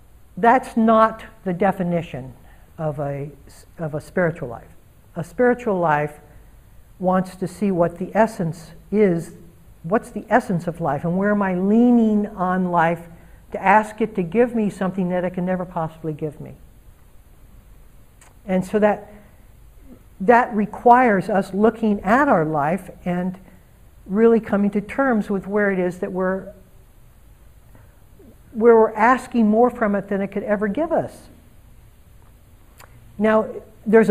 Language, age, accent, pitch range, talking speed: English, 60-79, American, 160-210 Hz, 140 wpm